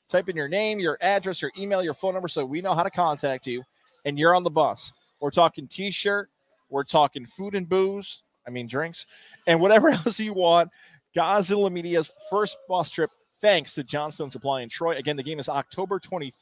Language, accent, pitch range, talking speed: English, American, 140-205 Hz, 200 wpm